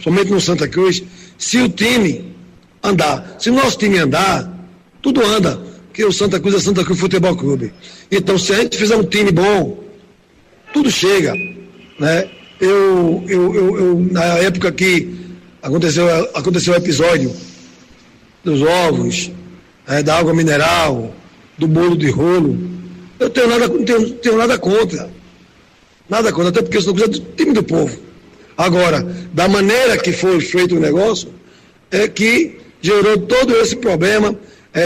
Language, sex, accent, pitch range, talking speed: Portuguese, male, Brazilian, 170-205 Hz, 155 wpm